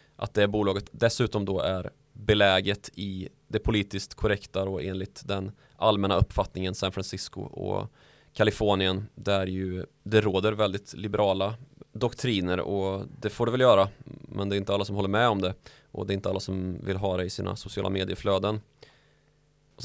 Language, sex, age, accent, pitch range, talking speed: Swedish, male, 20-39, native, 100-115 Hz, 170 wpm